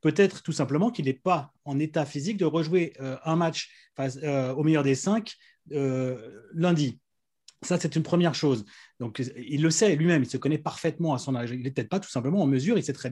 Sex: male